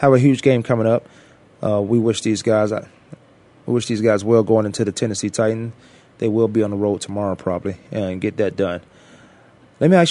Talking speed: 220 wpm